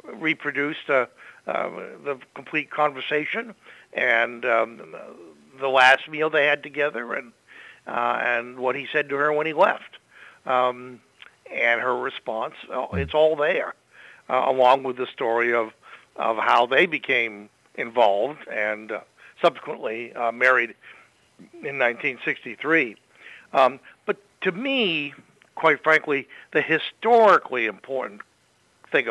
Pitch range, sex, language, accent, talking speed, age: 120-160 Hz, male, English, American, 125 wpm, 60-79